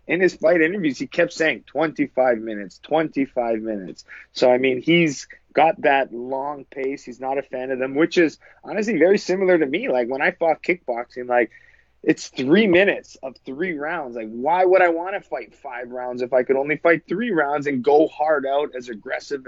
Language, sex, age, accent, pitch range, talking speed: English, male, 30-49, American, 130-165 Hz, 205 wpm